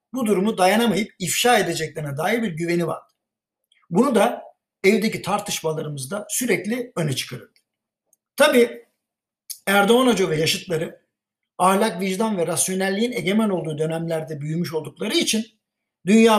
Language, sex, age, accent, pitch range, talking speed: Turkish, male, 60-79, native, 165-210 Hz, 115 wpm